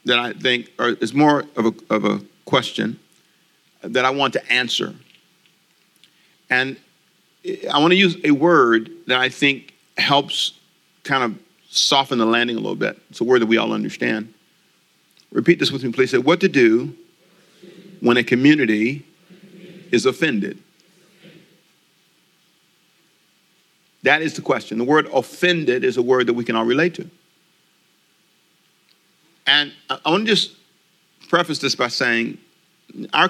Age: 50-69